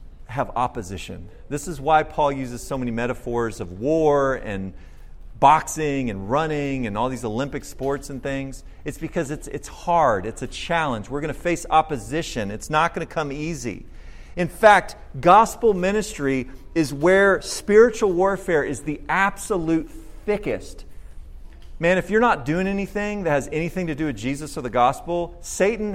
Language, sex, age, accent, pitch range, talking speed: English, male, 40-59, American, 115-165 Hz, 165 wpm